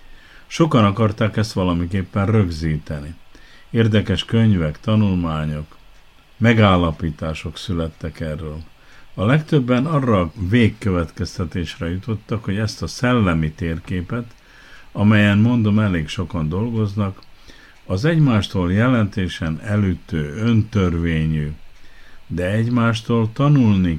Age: 60-79